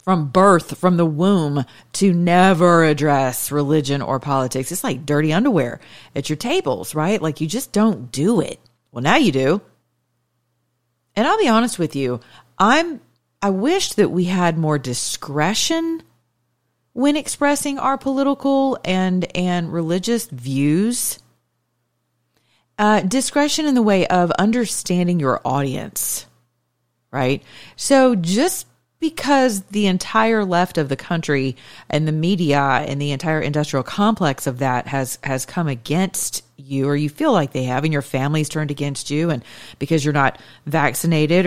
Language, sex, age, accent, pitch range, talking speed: English, female, 40-59, American, 135-185 Hz, 150 wpm